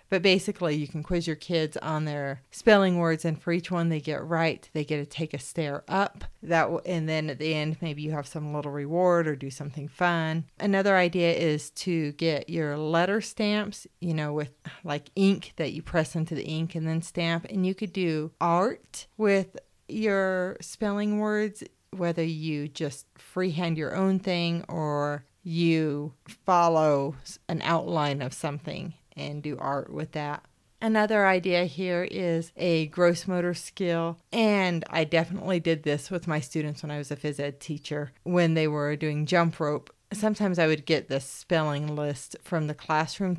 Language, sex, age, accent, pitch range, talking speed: English, female, 30-49, American, 150-180 Hz, 180 wpm